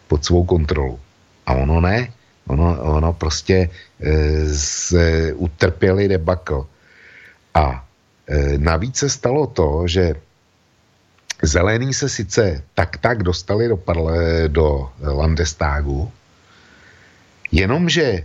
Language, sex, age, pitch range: Slovak, male, 60-79, 80-100 Hz